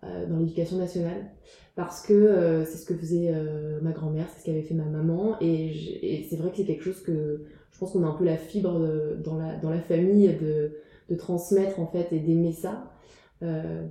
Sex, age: female, 20-39